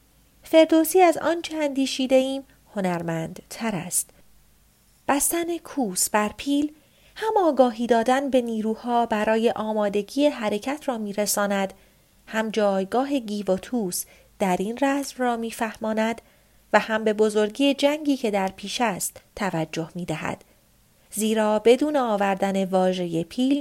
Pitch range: 195-270 Hz